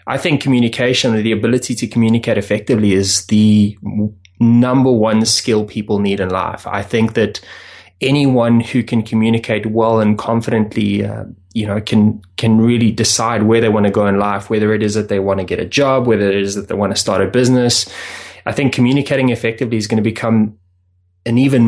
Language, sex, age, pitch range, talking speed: English, male, 20-39, 105-120 Hz, 195 wpm